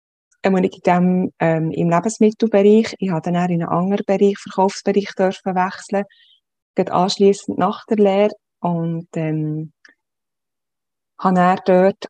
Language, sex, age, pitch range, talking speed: German, female, 20-39, 175-200 Hz, 135 wpm